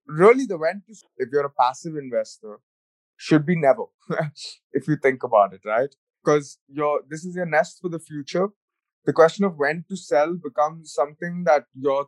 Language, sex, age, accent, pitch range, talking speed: English, male, 20-39, Indian, 140-195 Hz, 190 wpm